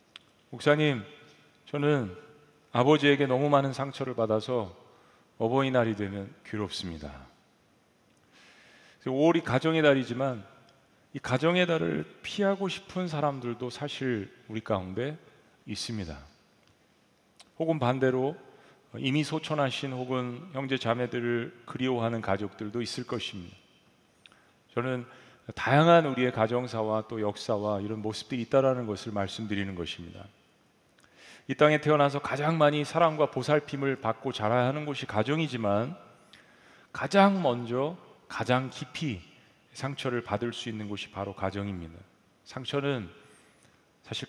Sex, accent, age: male, native, 40-59